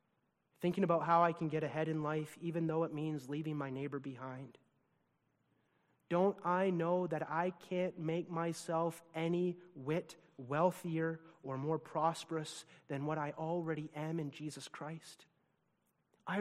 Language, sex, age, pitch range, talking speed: English, male, 30-49, 150-180 Hz, 145 wpm